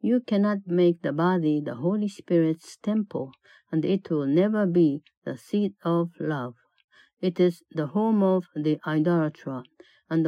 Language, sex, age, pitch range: Japanese, female, 60-79, 155-190 Hz